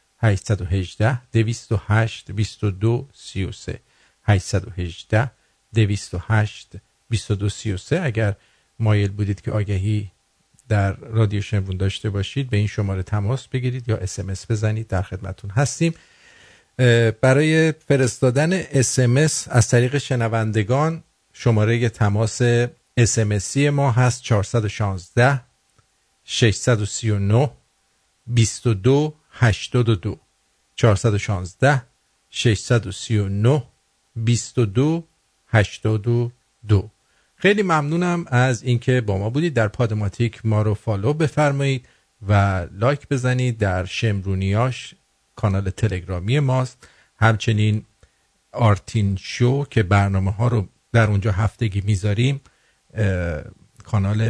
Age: 50-69